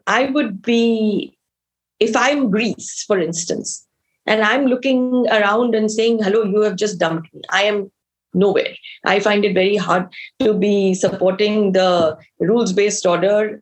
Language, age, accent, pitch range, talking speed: English, 20-39, Indian, 185-235 Hz, 150 wpm